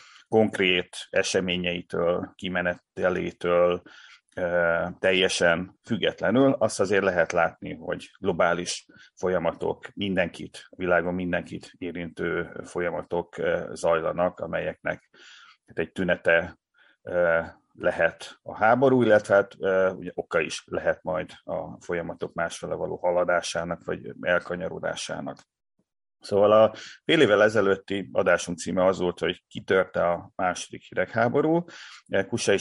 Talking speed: 95 wpm